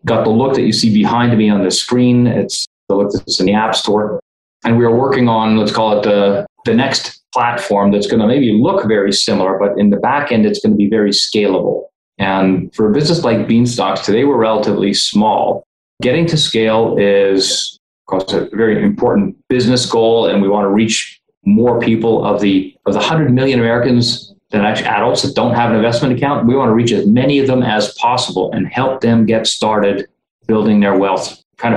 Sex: male